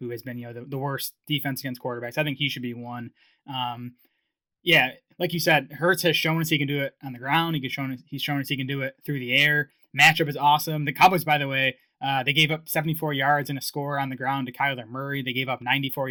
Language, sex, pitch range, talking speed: English, male, 130-155 Hz, 270 wpm